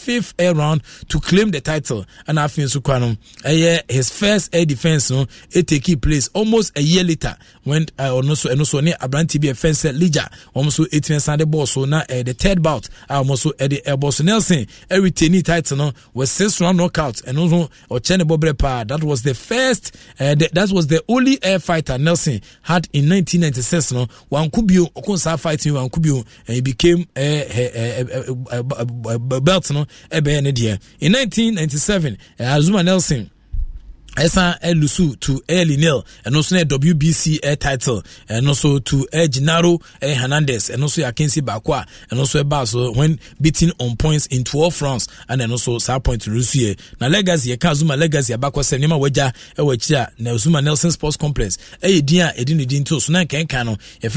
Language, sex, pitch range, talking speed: English, male, 135-175 Hz, 185 wpm